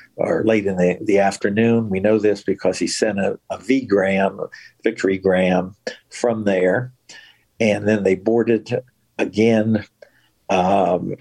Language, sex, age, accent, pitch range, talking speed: English, male, 60-79, American, 100-120 Hz, 135 wpm